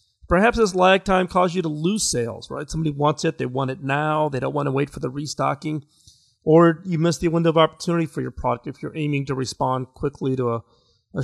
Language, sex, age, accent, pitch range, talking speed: English, male, 40-59, American, 125-160 Hz, 235 wpm